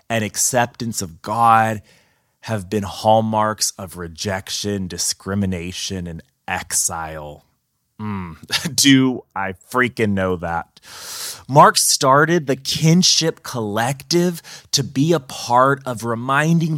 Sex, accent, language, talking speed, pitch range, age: male, American, English, 105 wpm, 100-135 Hz, 20-39